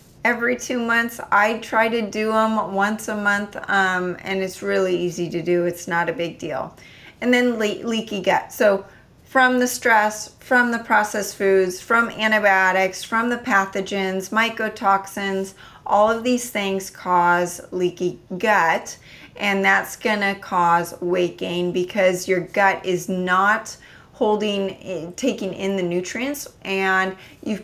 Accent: American